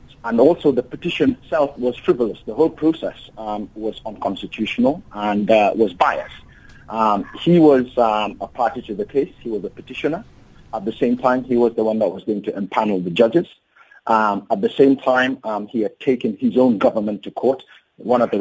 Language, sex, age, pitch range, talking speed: English, male, 30-49, 105-130 Hz, 200 wpm